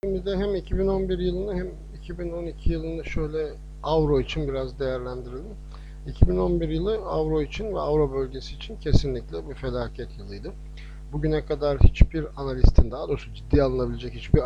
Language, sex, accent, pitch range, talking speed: Turkish, male, native, 125-155 Hz, 140 wpm